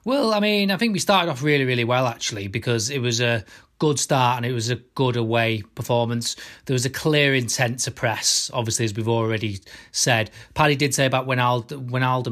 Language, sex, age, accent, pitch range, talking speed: English, male, 30-49, British, 120-145 Hz, 210 wpm